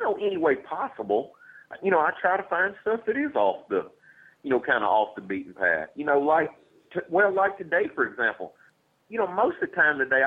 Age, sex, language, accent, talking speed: 40-59, male, English, American, 230 wpm